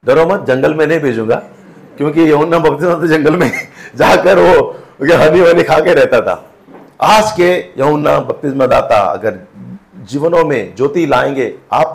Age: 50-69